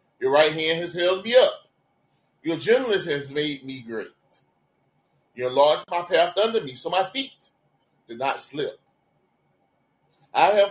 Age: 30-49